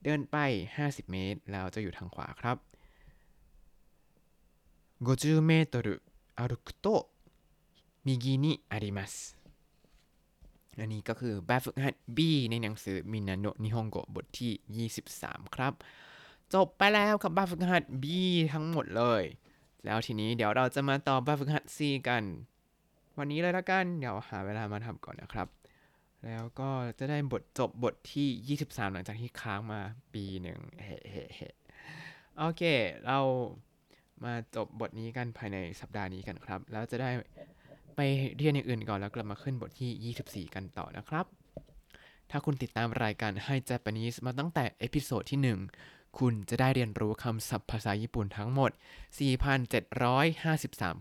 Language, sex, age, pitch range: Thai, male, 20-39, 105-140 Hz